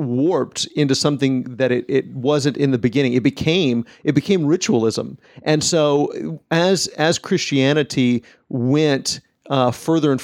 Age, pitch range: 40-59, 130-150 Hz